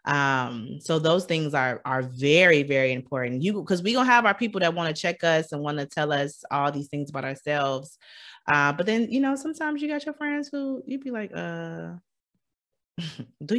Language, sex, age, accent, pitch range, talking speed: English, female, 20-39, American, 140-220 Hz, 210 wpm